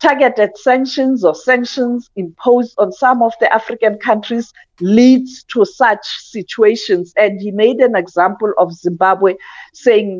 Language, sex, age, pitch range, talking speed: English, female, 50-69, 190-230 Hz, 135 wpm